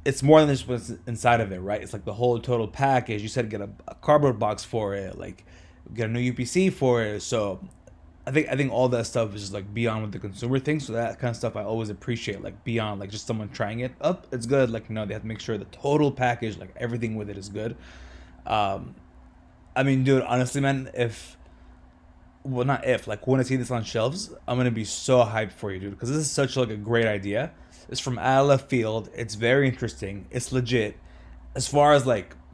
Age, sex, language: 20-39, male, English